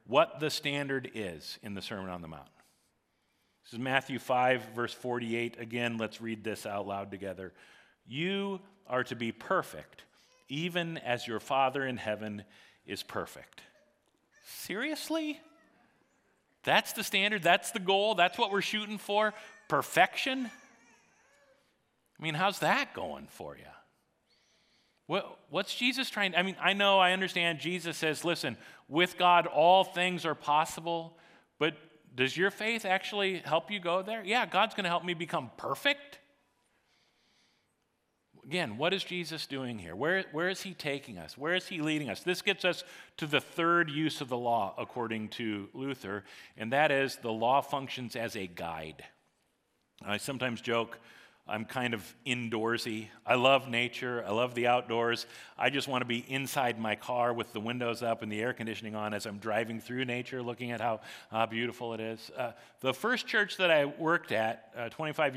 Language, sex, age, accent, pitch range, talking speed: English, male, 40-59, American, 115-180 Hz, 170 wpm